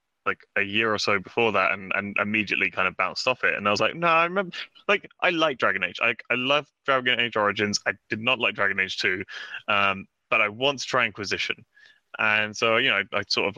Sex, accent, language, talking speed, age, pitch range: male, British, English, 245 wpm, 20-39, 100-120 Hz